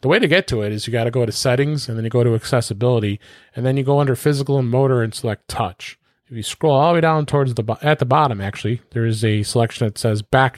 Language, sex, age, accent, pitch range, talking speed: English, male, 30-49, American, 110-140 Hz, 280 wpm